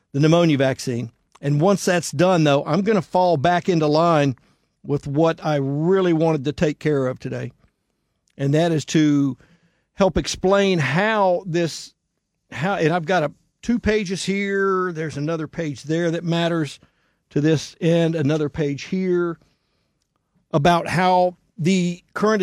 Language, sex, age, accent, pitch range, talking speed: English, male, 50-69, American, 145-190 Hz, 155 wpm